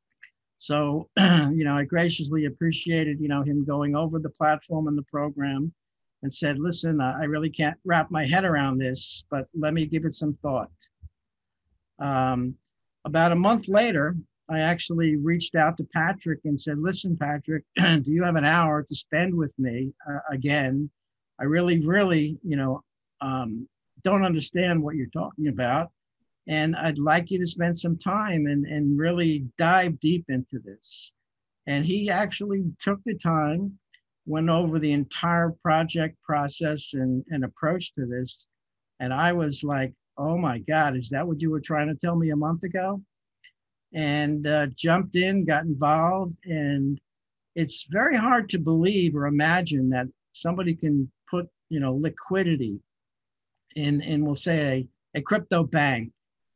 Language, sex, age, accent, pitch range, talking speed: English, male, 60-79, American, 140-170 Hz, 160 wpm